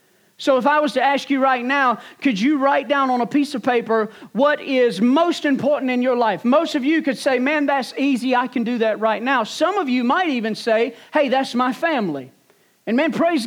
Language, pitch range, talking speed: English, 245-315 Hz, 230 wpm